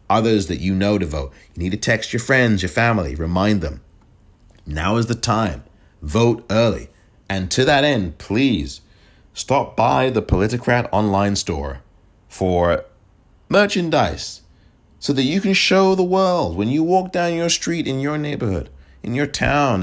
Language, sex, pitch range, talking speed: English, male, 80-115 Hz, 165 wpm